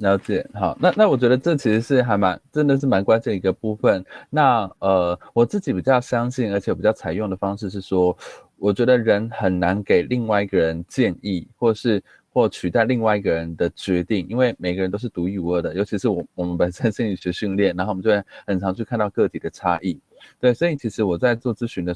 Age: 20-39